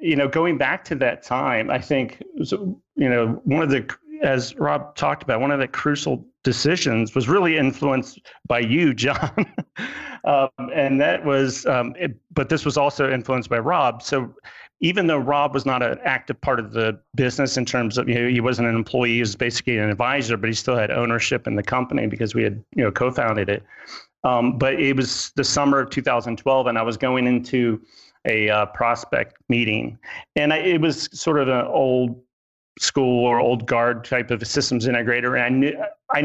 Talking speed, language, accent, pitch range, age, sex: 195 wpm, English, American, 120-140 Hz, 40-59, male